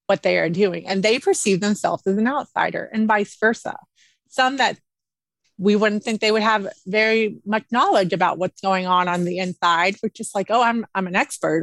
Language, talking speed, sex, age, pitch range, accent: English, 205 wpm, female, 30-49, 185-220 Hz, American